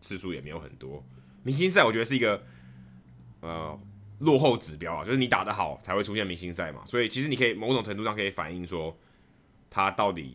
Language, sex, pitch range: Chinese, male, 75-105 Hz